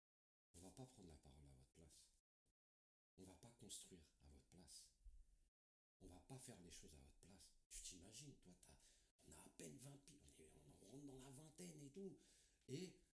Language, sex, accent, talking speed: French, male, French, 185 wpm